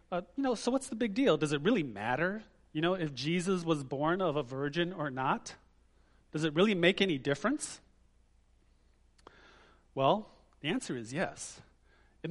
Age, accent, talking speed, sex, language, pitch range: 30-49, American, 170 wpm, male, English, 140-205 Hz